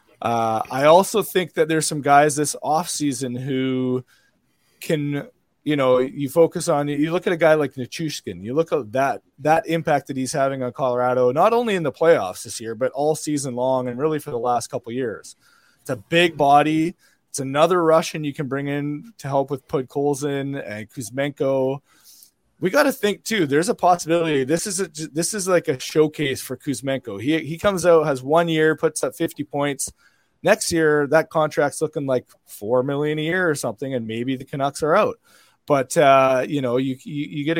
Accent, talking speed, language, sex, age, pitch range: American, 205 wpm, English, male, 20-39, 130-160 Hz